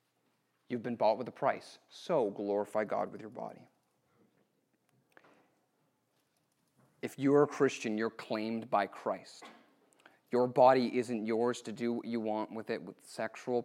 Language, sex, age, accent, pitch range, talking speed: English, male, 30-49, American, 110-145 Hz, 145 wpm